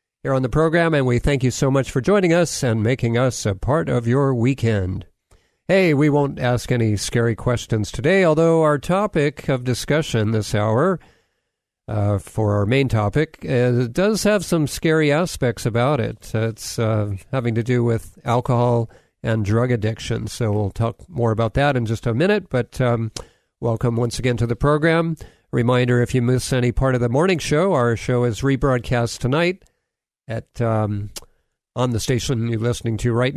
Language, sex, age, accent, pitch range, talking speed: English, male, 50-69, American, 115-145 Hz, 180 wpm